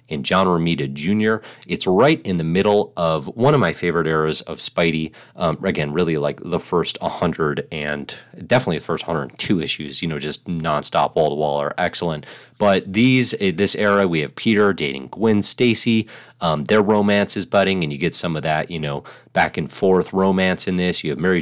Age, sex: 30-49, male